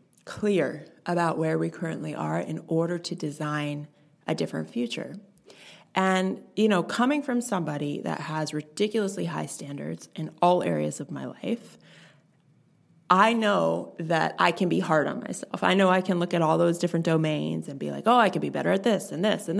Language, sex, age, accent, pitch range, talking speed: English, female, 20-39, American, 155-210 Hz, 190 wpm